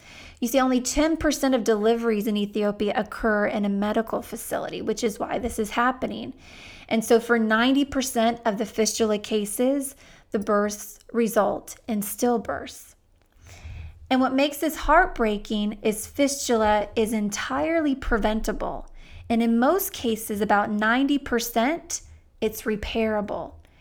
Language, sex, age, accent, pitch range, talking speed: English, female, 20-39, American, 210-245 Hz, 125 wpm